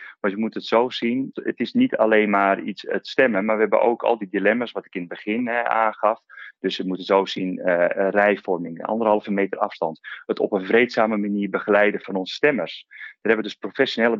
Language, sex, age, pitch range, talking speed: Dutch, male, 40-59, 95-115 Hz, 220 wpm